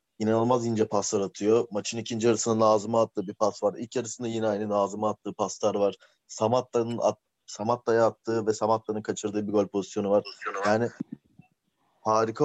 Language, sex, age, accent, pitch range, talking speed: Turkish, male, 30-49, native, 105-120 Hz, 155 wpm